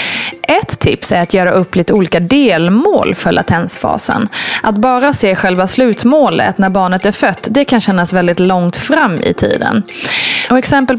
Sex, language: female, Swedish